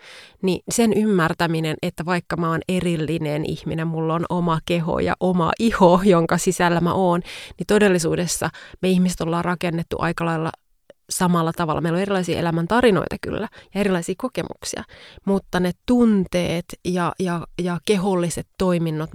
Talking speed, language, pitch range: 145 wpm, Finnish, 165-195 Hz